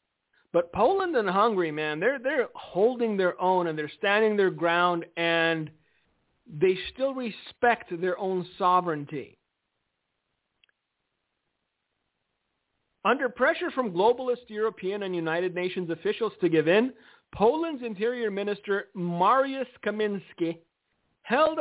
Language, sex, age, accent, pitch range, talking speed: English, male, 50-69, American, 175-245 Hz, 110 wpm